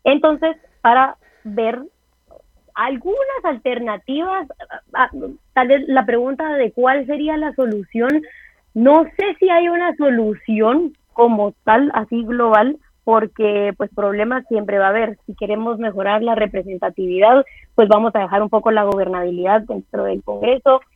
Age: 20-39